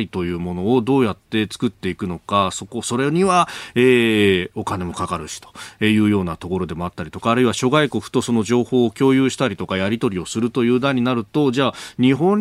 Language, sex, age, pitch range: Japanese, male, 40-59, 100-150 Hz